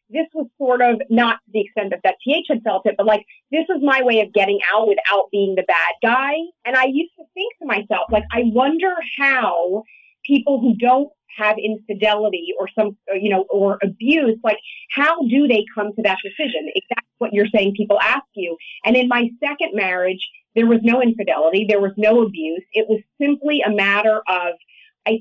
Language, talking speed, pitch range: English, 205 wpm, 205-260 Hz